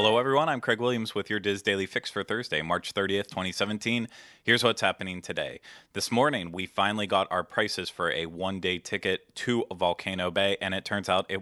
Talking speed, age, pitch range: 200 wpm, 30-49, 90-105 Hz